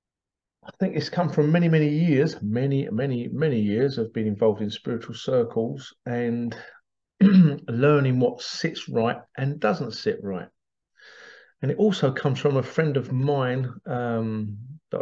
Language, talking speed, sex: English, 150 wpm, male